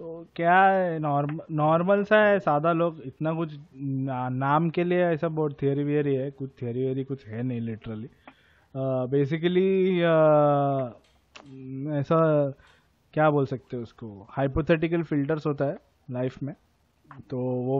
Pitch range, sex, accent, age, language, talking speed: 130-155 Hz, male, native, 20-39, Hindi, 140 wpm